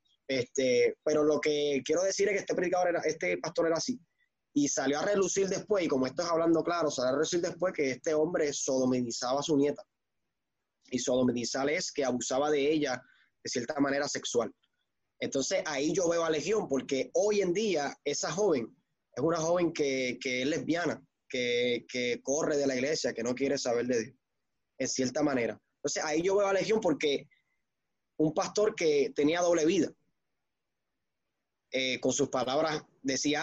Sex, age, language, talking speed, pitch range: male, 20-39, Spanish, 180 wpm, 130-170 Hz